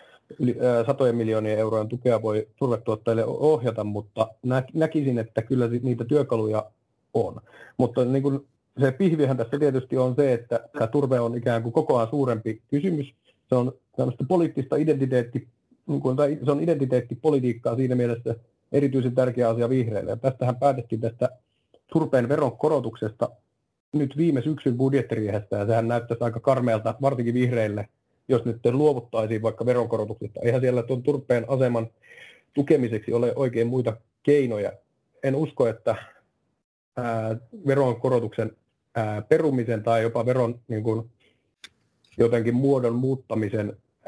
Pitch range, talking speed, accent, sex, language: 115-135 Hz, 125 wpm, native, male, Finnish